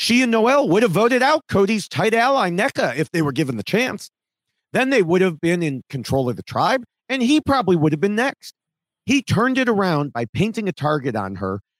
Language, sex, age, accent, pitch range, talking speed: English, male, 40-59, American, 135-205 Hz, 225 wpm